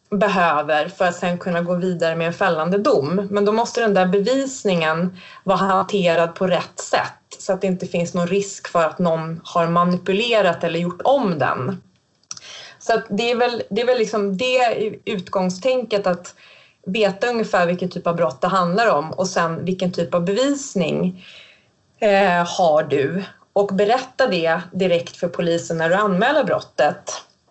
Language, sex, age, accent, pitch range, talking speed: Swedish, female, 30-49, native, 175-210 Hz, 170 wpm